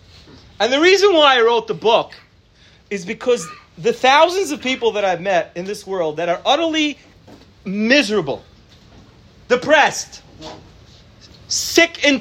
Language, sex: English, male